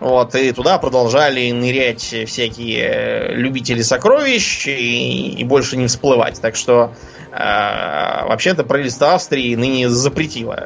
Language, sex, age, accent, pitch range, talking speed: Russian, male, 20-39, native, 115-150 Hz, 120 wpm